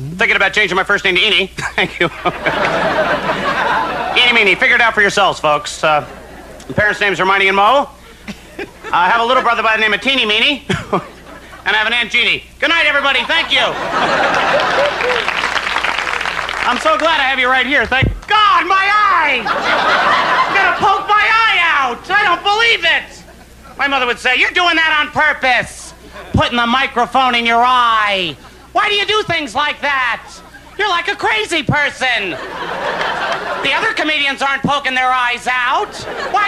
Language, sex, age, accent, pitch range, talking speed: English, male, 50-69, American, 240-345 Hz, 175 wpm